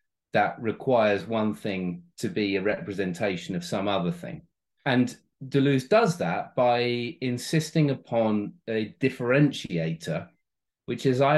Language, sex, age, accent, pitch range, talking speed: English, male, 30-49, British, 100-150 Hz, 125 wpm